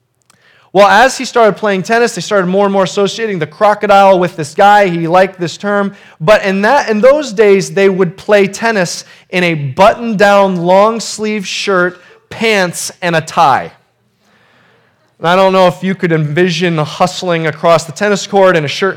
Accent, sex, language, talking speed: American, male, English, 180 wpm